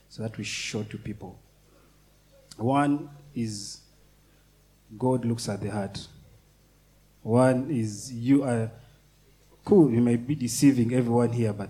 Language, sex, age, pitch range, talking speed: English, male, 30-49, 110-145 Hz, 130 wpm